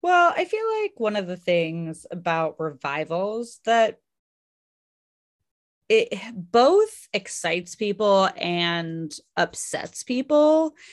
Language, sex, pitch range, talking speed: English, female, 165-215 Hz, 100 wpm